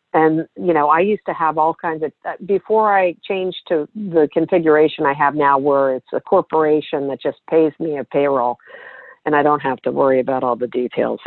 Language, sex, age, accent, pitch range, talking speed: English, female, 50-69, American, 140-180 Hz, 210 wpm